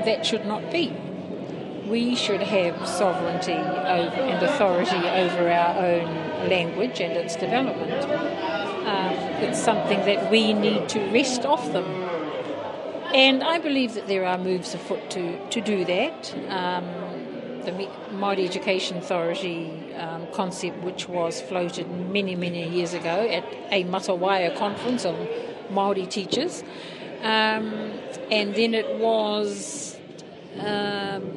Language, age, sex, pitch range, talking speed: English, 50-69, female, 180-215 Hz, 130 wpm